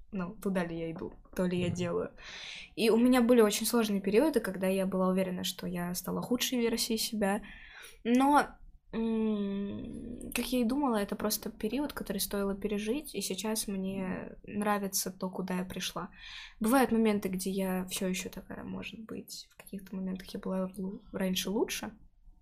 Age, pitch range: 20-39, 185-225 Hz